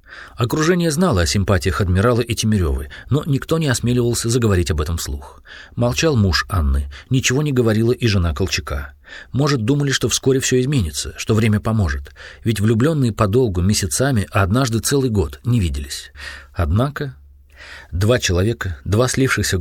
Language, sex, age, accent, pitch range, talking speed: Russian, male, 40-59, native, 85-125 Hz, 145 wpm